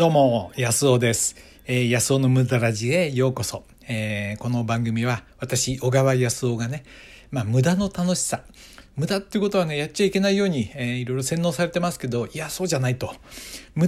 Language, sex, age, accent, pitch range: Japanese, male, 60-79, native, 115-175 Hz